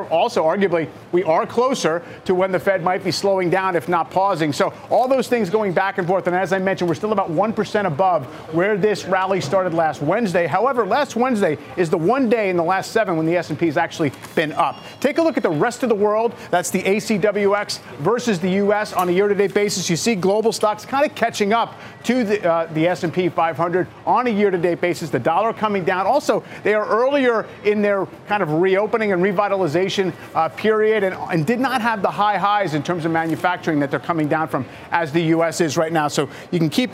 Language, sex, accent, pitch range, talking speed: English, male, American, 165-205 Hz, 225 wpm